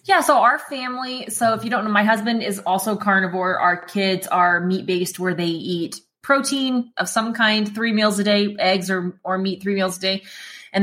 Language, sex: English, female